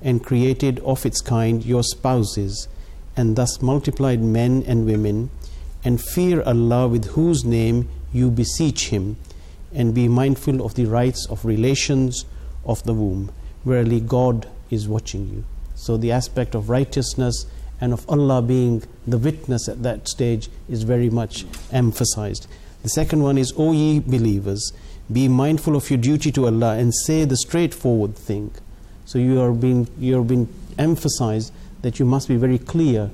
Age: 50-69